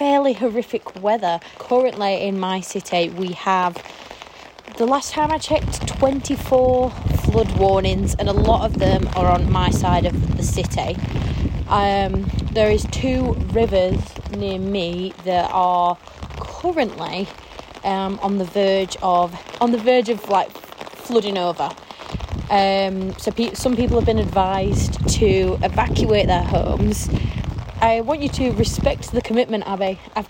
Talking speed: 145 wpm